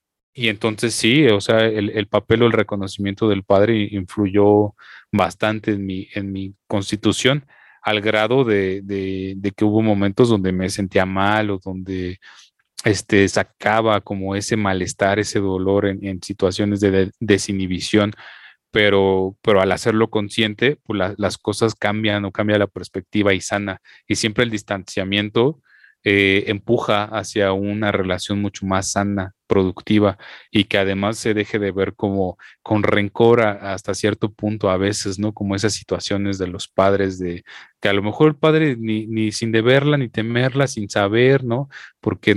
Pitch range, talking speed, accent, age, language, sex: 100-115 Hz, 165 wpm, Mexican, 30-49, Spanish, male